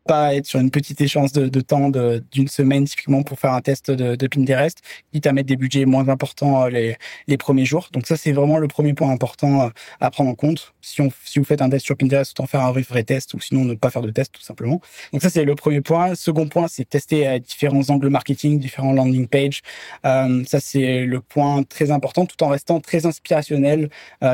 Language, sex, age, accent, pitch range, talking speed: French, male, 20-39, French, 130-145 Hz, 245 wpm